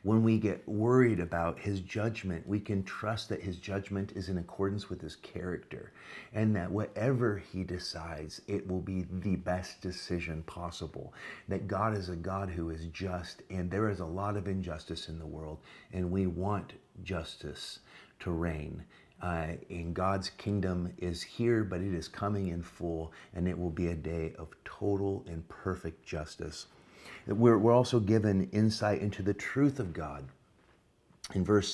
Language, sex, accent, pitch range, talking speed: English, male, American, 85-100 Hz, 170 wpm